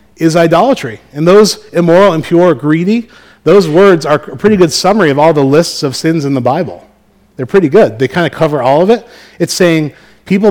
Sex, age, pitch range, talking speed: male, 40-59, 120-165 Hz, 205 wpm